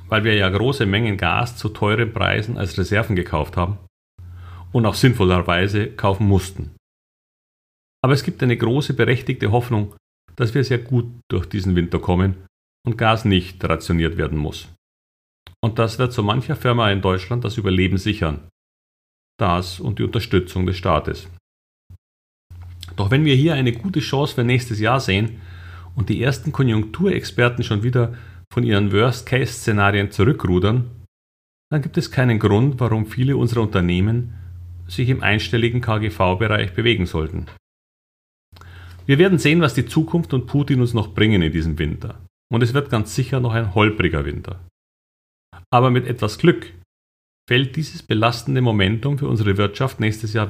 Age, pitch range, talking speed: 40-59, 90-125 Hz, 150 wpm